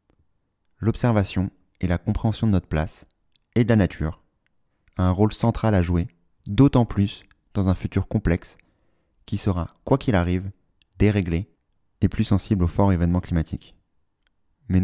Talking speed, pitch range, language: 150 wpm, 85-105 Hz, French